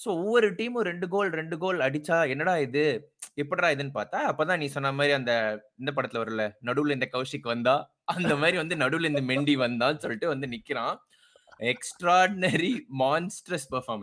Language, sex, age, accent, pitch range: Tamil, male, 20-39, native, 125-170 Hz